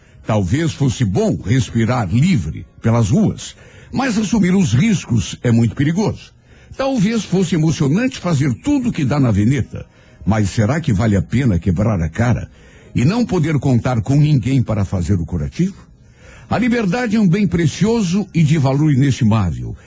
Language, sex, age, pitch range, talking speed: Portuguese, male, 60-79, 115-185 Hz, 155 wpm